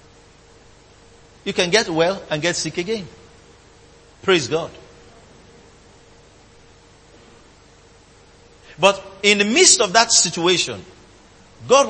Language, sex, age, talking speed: English, male, 50-69, 90 wpm